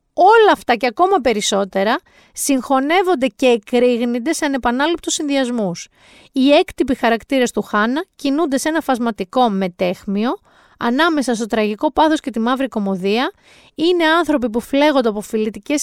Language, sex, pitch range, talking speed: Greek, female, 220-280 Hz, 135 wpm